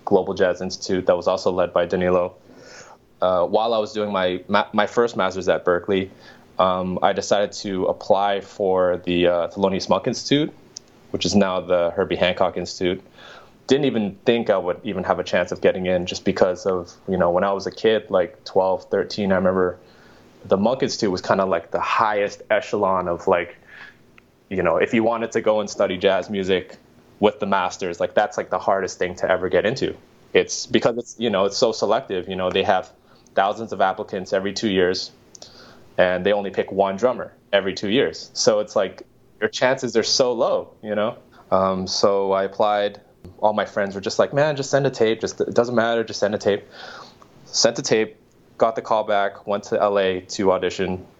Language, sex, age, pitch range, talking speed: English, male, 20-39, 95-110 Hz, 205 wpm